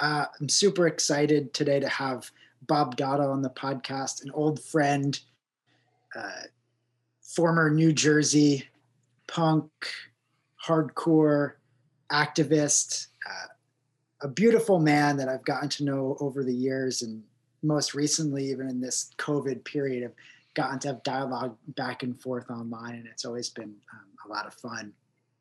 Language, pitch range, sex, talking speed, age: English, 125-150 Hz, male, 140 wpm, 30-49